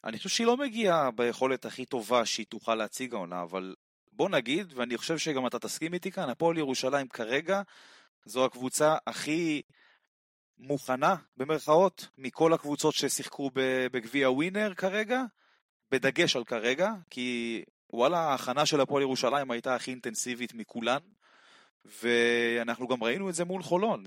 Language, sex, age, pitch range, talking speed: Hebrew, male, 30-49, 115-160 Hz, 140 wpm